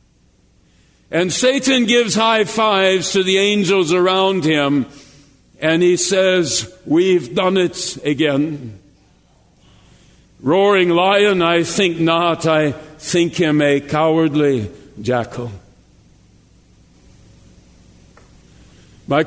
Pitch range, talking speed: 120-170 Hz, 90 wpm